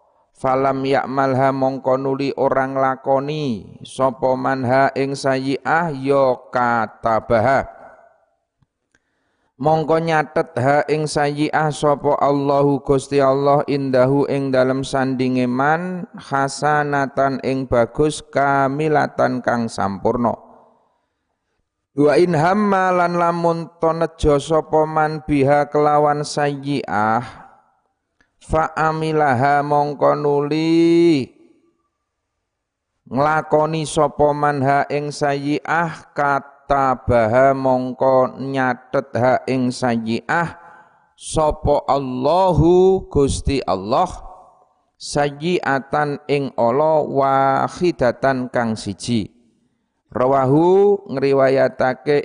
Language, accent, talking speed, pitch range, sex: Indonesian, native, 75 wpm, 130-150 Hz, male